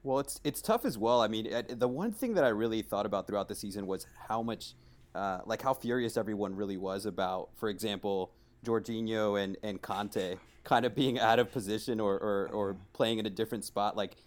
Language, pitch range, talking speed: English, 105-130 Hz, 215 wpm